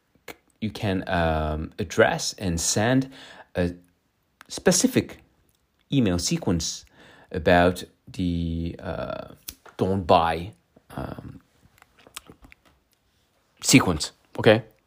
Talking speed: 75 wpm